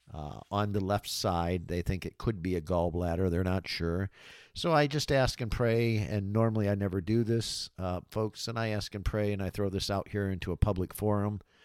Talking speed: 225 wpm